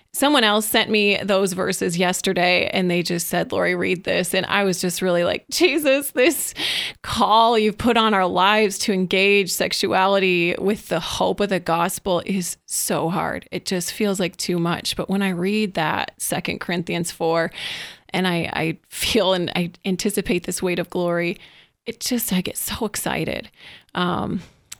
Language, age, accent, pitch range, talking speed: English, 30-49, American, 185-220 Hz, 175 wpm